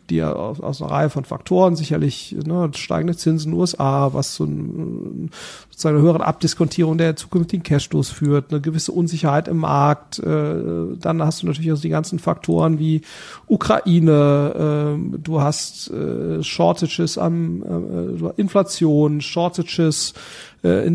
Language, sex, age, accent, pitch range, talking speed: German, male, 40-59, German, 145-170 Hz, 130 wpm